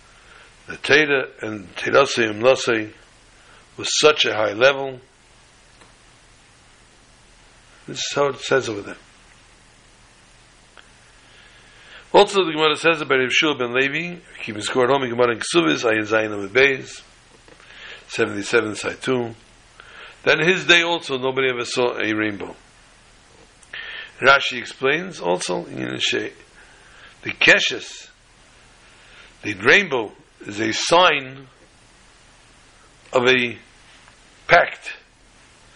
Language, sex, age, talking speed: English, male, 60-79, 105 wpm